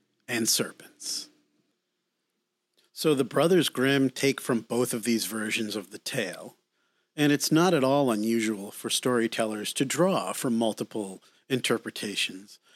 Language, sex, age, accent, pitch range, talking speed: English, male, 40-59, American, 110-125 Hz, 130 wpm